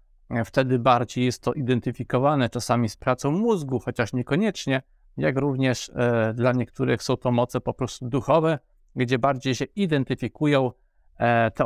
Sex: male